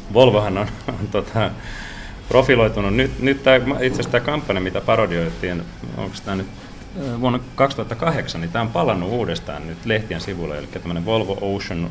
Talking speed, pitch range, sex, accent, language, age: 140 wpm, 95-120 Hz, male, native, Finnish, 30-49